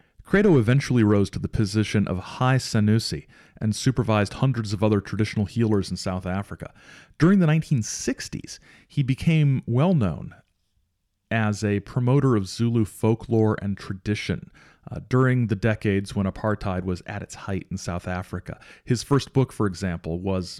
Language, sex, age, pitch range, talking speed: English, male, 40-59, 95-115 Hz, 150 wpm